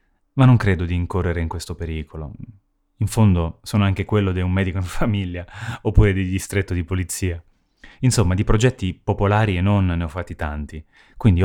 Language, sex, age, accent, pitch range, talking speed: Italian, male, 30-49, native, 85-115 Hz, 180 wpm